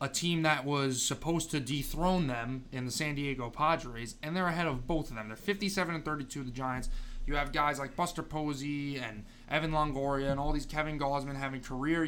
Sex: male